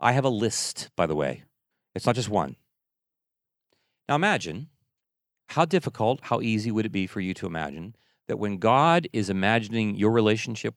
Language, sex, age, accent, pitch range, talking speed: English, male, 40-59, American, 110-145 Hz, 175 wpm